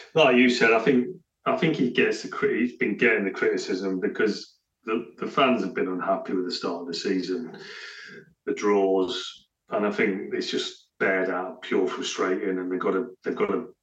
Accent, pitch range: British, 95-120 Hz